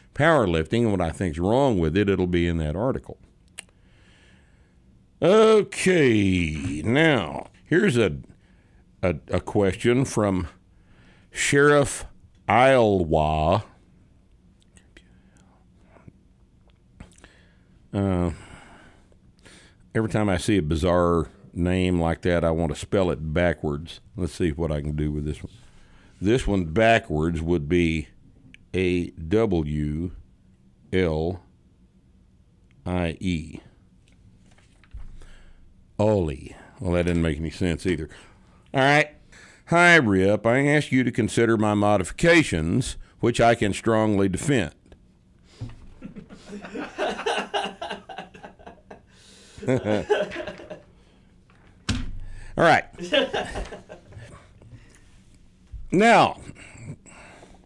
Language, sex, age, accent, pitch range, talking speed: English, male, 60-79, American, 85-110 Hz, 90 wpm